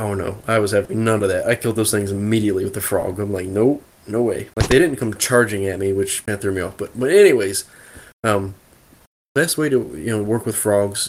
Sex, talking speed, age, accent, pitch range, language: male, 250 wpm, 20-39, American, 100-120 Hz, English